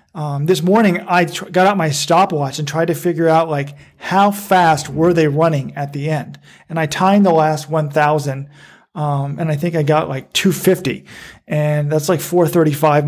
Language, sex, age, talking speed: English, male, 40-59, 190 wpm